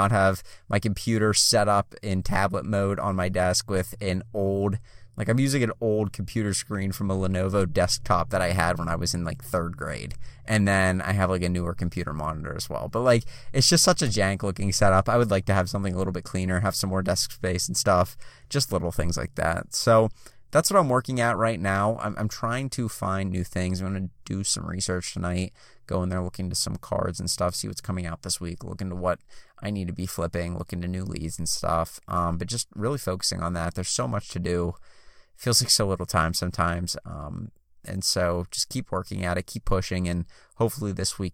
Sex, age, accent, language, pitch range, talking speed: male, 20-39, American, English, 90-110 Hz, 230 wpm